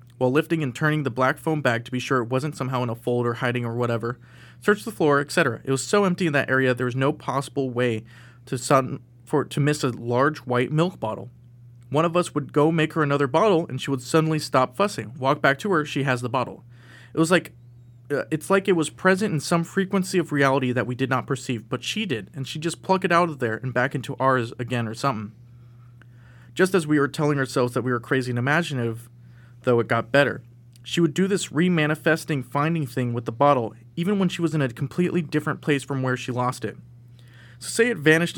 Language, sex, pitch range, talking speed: English, male, 120-155 Hz, 235 wpm